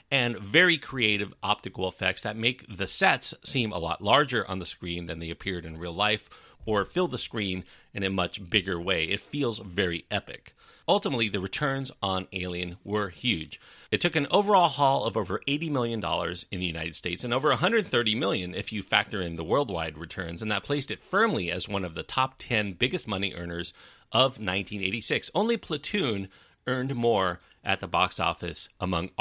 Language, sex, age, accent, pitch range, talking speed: English, male, 40-59, American, 90-125 Hz, 185 wpm